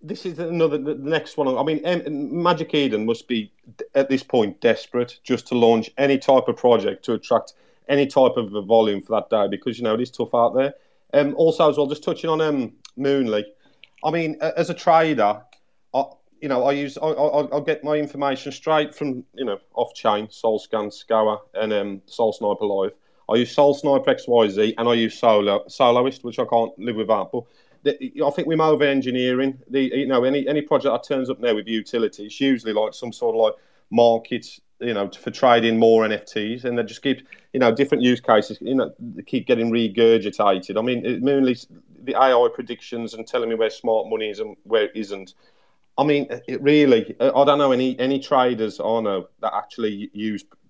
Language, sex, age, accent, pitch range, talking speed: English, male, 40-59, British, 115-150 Hz, 200 wpm